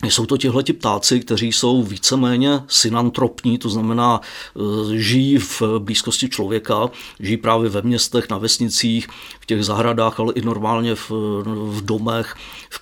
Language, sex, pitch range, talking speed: Czech, male, 115-125 Hz, 140 wpm